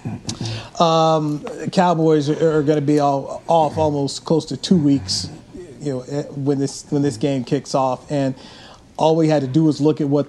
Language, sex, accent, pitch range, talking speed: English, male, American, 135-155 Hz, 200 wpm